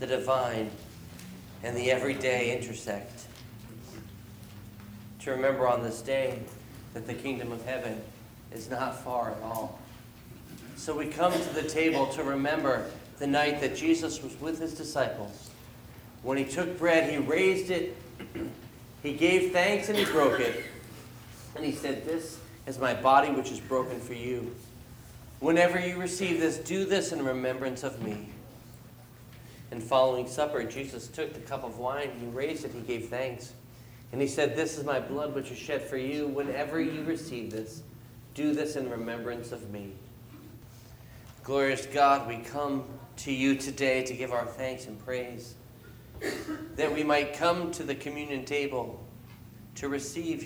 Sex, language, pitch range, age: male, English, 120-145 Hz, 40-59